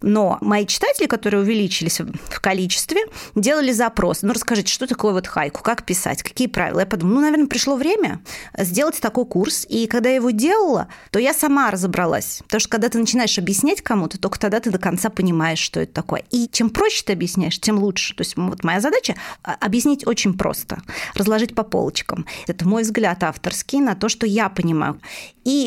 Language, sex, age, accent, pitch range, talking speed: Russian, female, 30-49, native, 185-235 Hz, 190 wpm